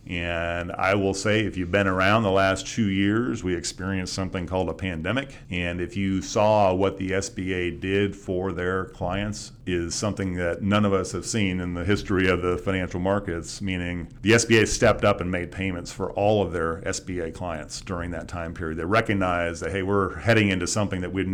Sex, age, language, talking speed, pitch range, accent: male, 40-59, English, 200 wpm, 90-110 Hz, American